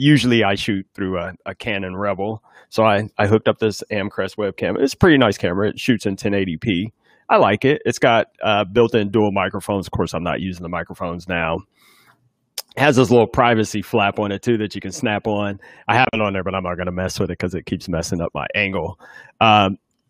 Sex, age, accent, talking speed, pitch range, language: male, 30-49, American, 230 wpm, 95-120 Hz, English